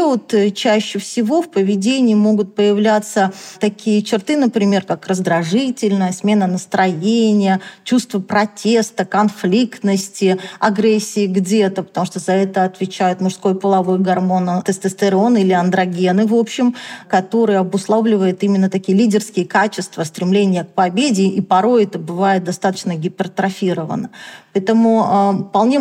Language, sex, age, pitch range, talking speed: Russian, female, 20-39, 185-220 Hz, 115 wpm